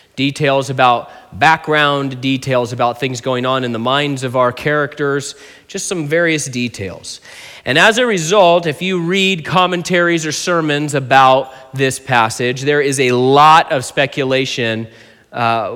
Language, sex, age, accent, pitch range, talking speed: English, male, 30-49, American, 130-165 Hz, 145 wpm